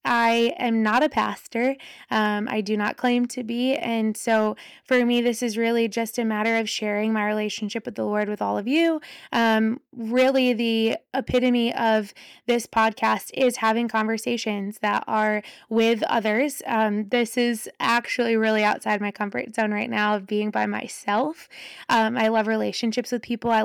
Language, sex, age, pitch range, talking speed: English, female, 20-39, 215-245 Hz, 175 wpm